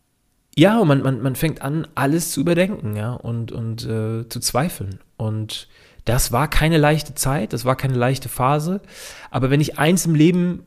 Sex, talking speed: male, 180 wpm